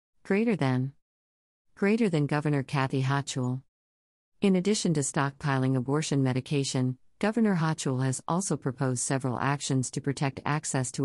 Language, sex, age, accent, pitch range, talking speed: English, female, 50-69, American, 130-155 Hz, 130 wpm